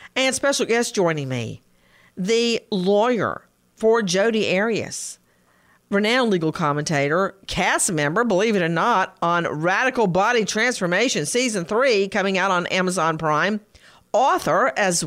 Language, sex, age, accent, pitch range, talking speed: English, female, 50-69, American, 160-220 Hz, 125 wpm